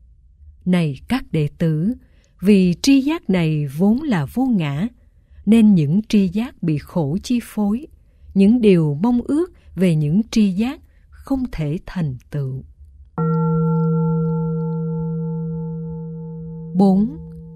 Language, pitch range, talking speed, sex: Vietnamese, 155-225 Hz, 115 wpm, female